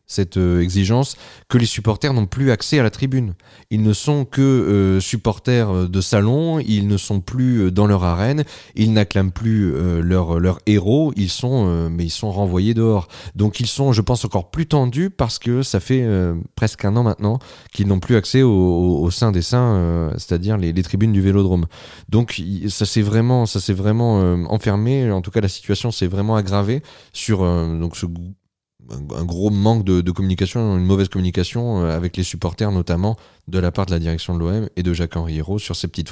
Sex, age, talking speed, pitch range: male, 30-49, 205 wpm, 90-115 Hz